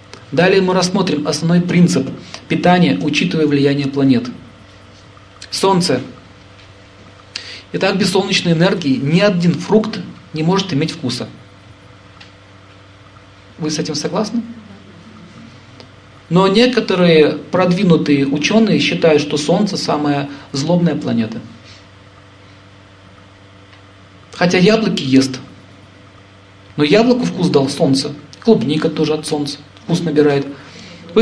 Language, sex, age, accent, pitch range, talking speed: Russian, male, 40-59, native, 125-195 Hz, 95 wpm